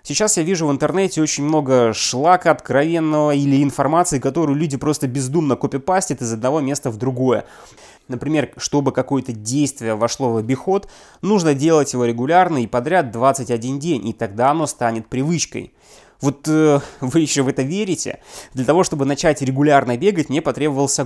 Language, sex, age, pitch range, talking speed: Russian, male, 20-39, 130-160 Hz, 160 wpm